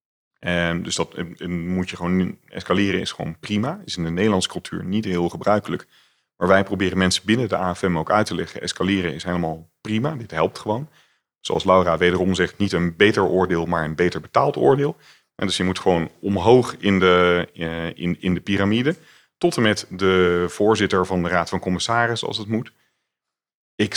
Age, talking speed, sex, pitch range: 40-59, 190 wpm, male, 90-105 Hz